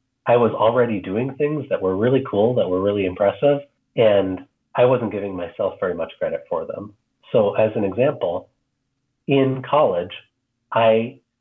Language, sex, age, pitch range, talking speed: English, male, 30-49, 90-130 Hz, 160 wpm